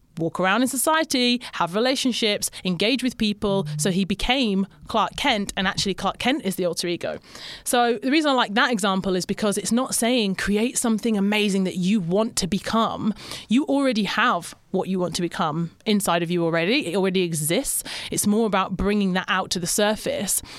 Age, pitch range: 30-49, 180-230 Hz